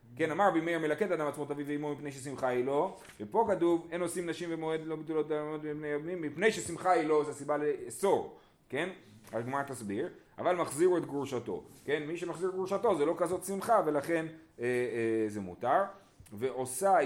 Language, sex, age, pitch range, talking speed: Hebrew, male, 30-49, 115-170 Hz, 190 wpm